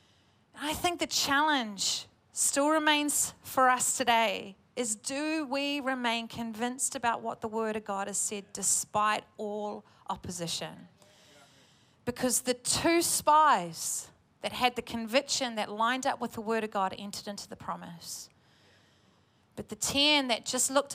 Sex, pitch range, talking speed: female, 215-270 Hz, 145 wpm